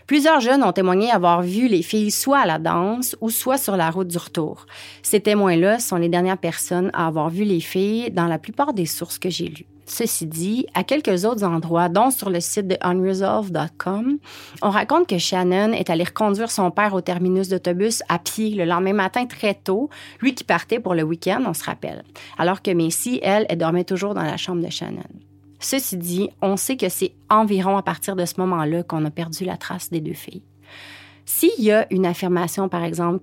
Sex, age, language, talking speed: female, 30-49, French, 210 wpm